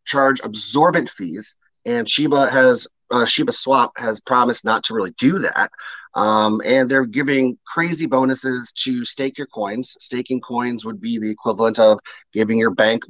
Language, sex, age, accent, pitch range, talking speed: English, male, 30-49, American, 115-140 Hz, 165 wpm